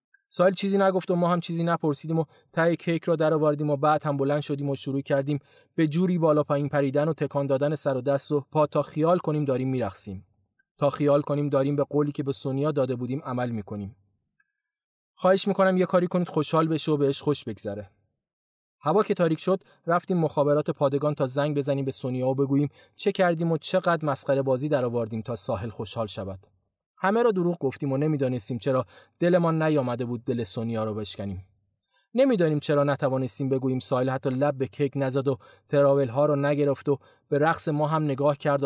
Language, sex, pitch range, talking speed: Persian, male, 130-155 Hz, 195 wpm